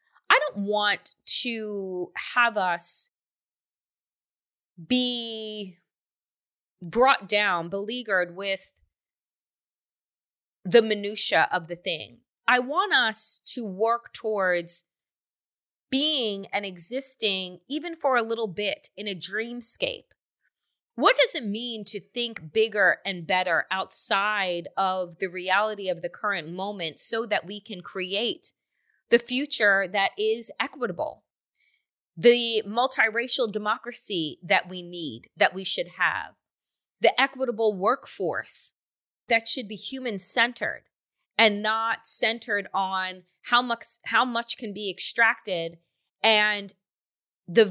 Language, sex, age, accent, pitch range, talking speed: English, female, 20-39, American, 190-235 Hz, 115 wpm